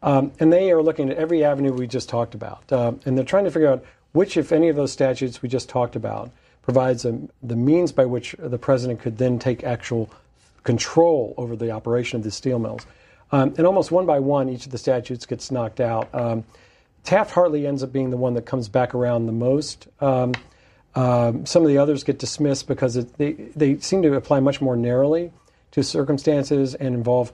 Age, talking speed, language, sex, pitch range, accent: 50-69, 215 wpm, English, male, 120-145 Hz, American